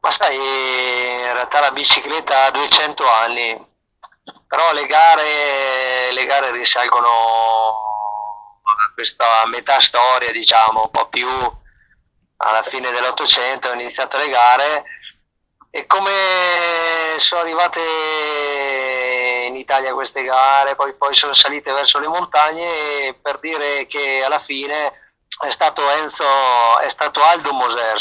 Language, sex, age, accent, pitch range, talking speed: Italian, male, 30-49, native, 115-145 Hz, 120 wpm